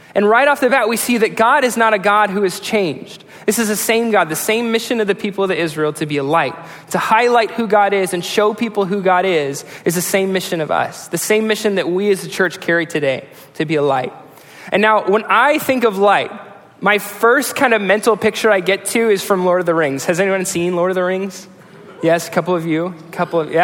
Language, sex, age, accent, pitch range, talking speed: English, male, 20-39, American, 170-210 Hz, 260 wpm